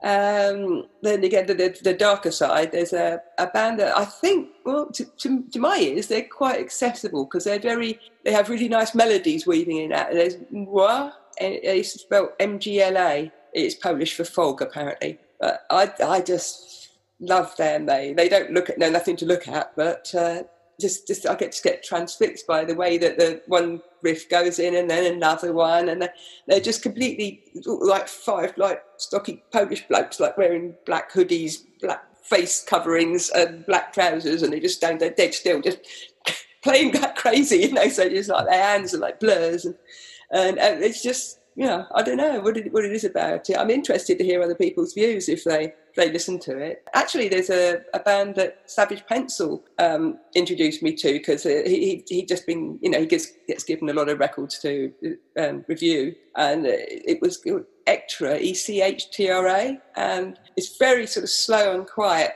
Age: 40-59